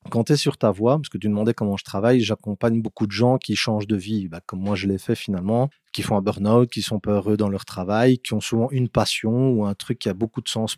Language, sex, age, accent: French, male, 30-49, French